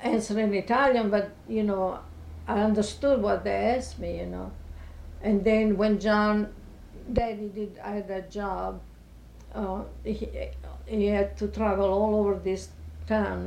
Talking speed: 150 wpm